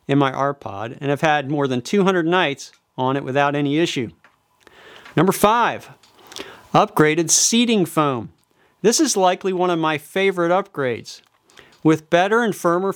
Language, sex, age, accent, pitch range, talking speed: English, male, 50-69, American, 135-190 Hz, 150 wpm